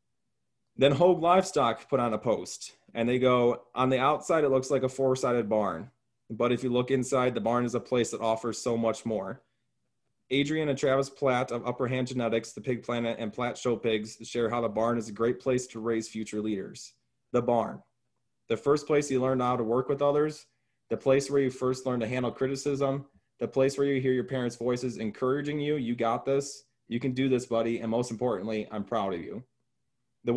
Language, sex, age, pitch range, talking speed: English, male, 20-39, 115-135 Hz, 215 wpm